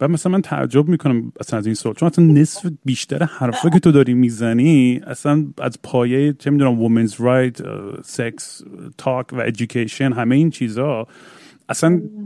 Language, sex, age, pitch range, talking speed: Persian, male, 30-49, 115-150 Hz, 155 wpm